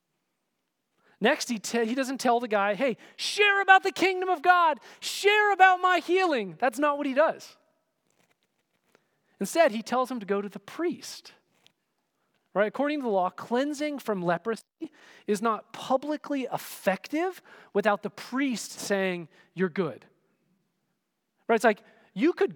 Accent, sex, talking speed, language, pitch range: American, male, 150 wpm, English, 195-300 Hz